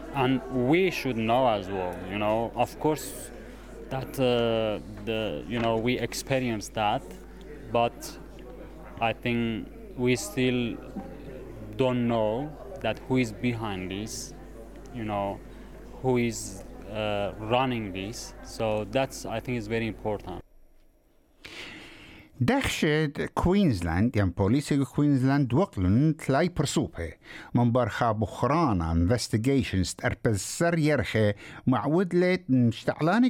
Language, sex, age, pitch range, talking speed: English, male, 30-49, 105-140 Hz, 115 wpm